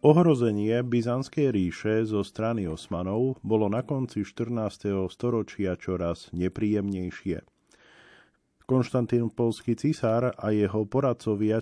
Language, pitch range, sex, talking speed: Slovak, 100-120 Hz, male, 95 wpm